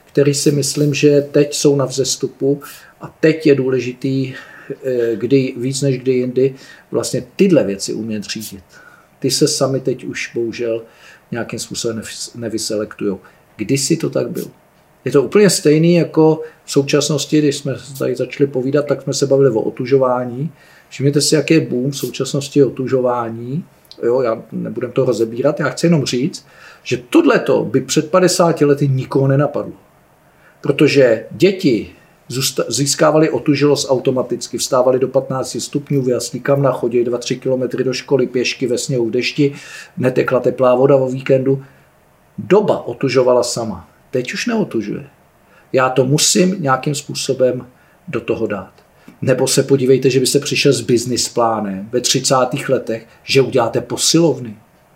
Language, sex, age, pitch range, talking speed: Czech, male, 50-69, 125-145 Hz, 145 wpm